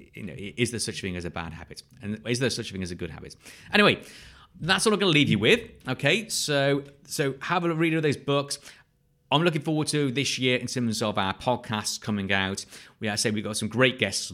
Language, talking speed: English, 250 wpm